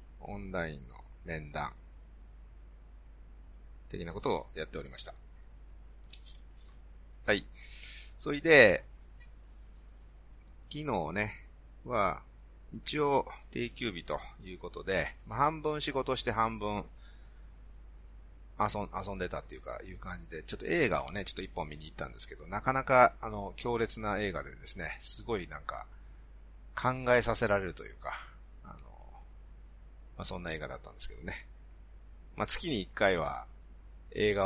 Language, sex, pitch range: Japanese, male, 65-105 Hz